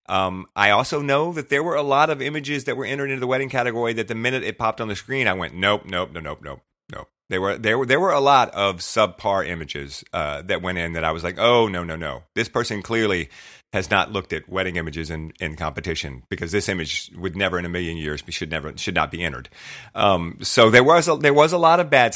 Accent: American